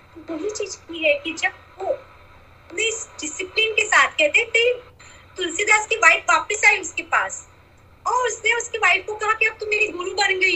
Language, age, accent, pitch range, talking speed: Hindi, 30-49, native, 315-420 Hz, 150 wpm